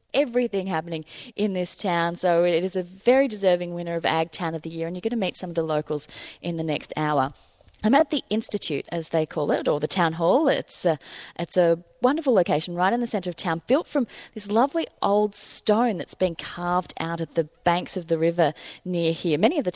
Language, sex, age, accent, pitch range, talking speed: English, female, 30-49, Australian, 155-200 Hz, 230 wpm